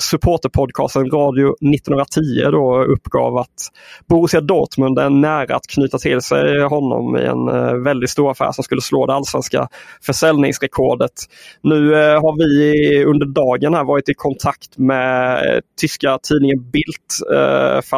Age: 20-39